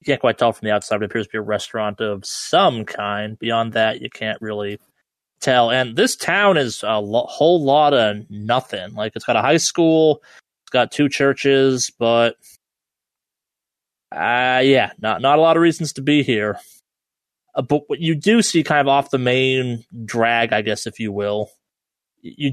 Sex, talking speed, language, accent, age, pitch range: male, 195 wpm, English, American, 20-39, 110-145 Hz